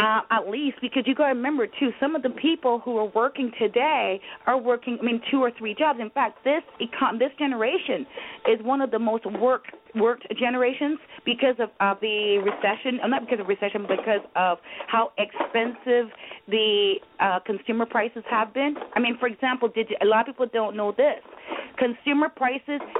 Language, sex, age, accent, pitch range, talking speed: English, female, 30-49, American, 225-290 Hz, 200 wpm